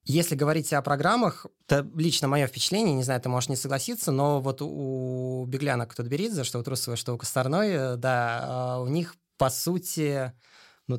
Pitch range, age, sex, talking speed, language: 125-150 Hz, 20-39, male, 170 wpm, Russian